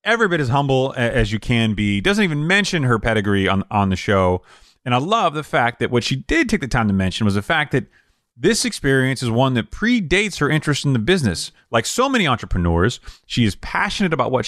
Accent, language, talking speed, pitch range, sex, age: American, English, 230 wpm, 105-160 Hz, male, 30-49